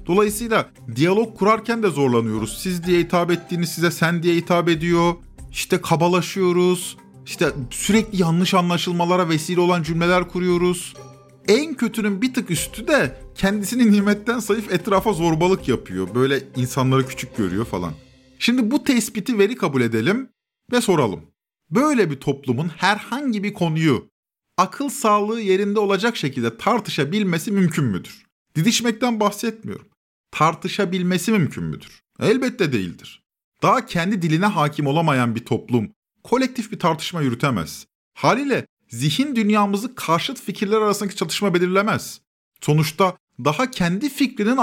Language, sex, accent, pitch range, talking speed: Turkish, male, native, 160-215 Hz, 125 wpm